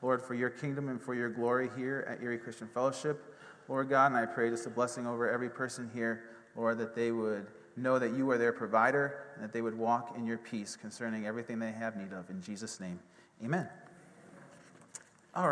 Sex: male